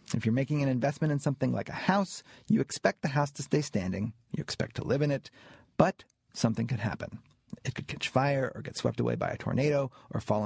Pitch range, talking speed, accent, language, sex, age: 115-150 Hz, 230 wpm, American, English, male, 40-59